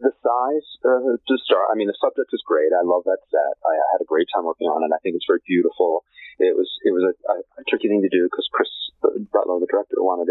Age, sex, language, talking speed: 30-49, male, English, 270 wpm